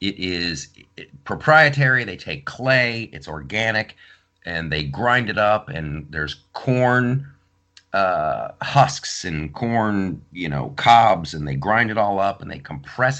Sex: male